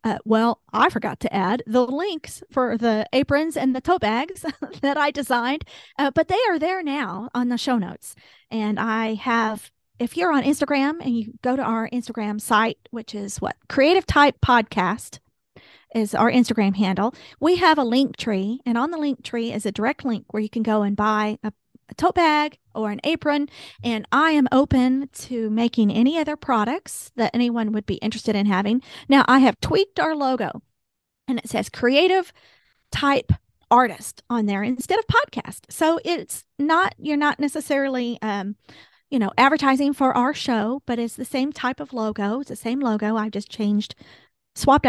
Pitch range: 220-280 Hz